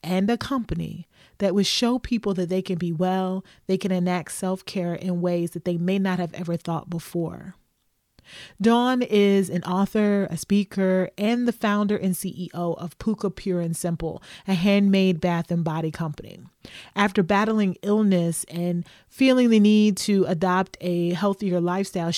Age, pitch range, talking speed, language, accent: 30-49, 175-205 Hz, 160 wpm, English, American